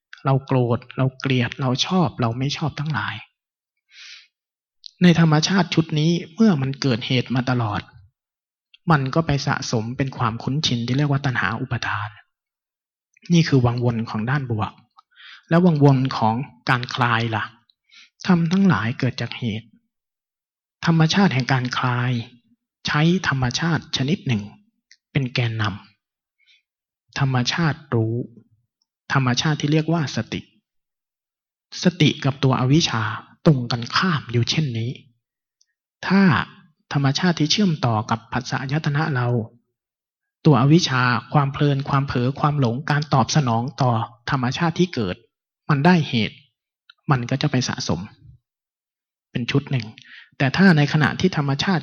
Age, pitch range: 20-39, 120-155 Hz